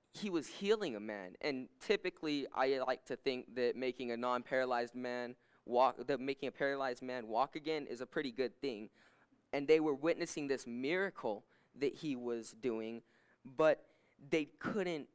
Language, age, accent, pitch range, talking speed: English, 10-29, American, 130-160 Hz, 165 wpm